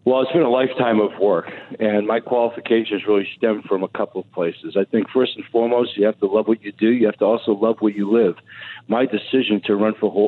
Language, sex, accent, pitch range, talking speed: English, male, American, 105-115 Hz, 245 wpm